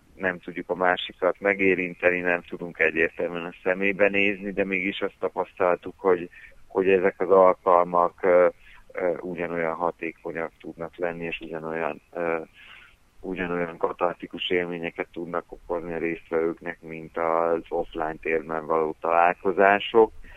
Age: 30-49